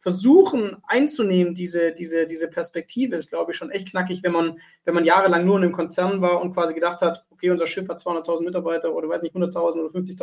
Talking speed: 225 wpm